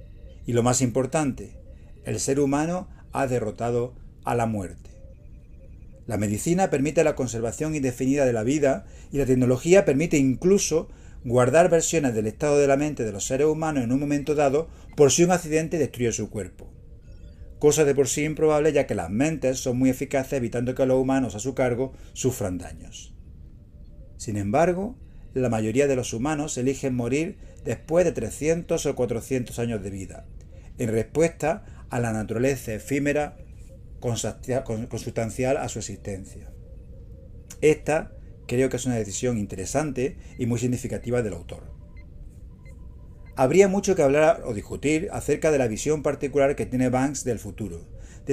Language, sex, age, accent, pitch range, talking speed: Spanish, male, 40-59, Spanish, 105-145 Hz, 155 wpm